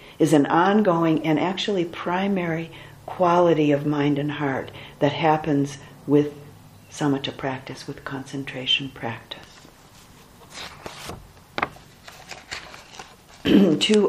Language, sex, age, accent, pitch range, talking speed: English, female, 60-79, American, 140-165 Hz, 85 wpm